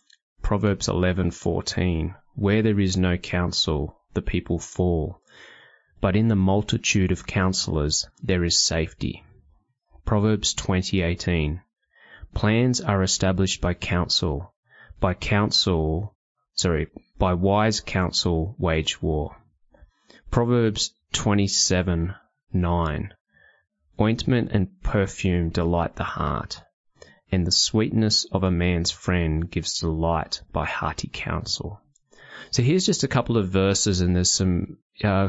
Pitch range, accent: 85-100 Hz, Australian